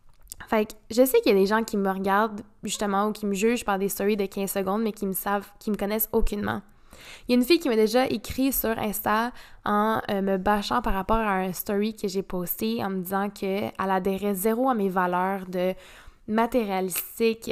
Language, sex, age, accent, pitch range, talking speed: French, female, 10-29, Canadian, 200-245 Hz, 225 wpm